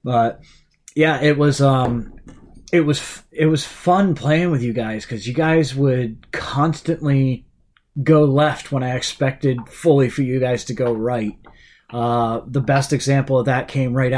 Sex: male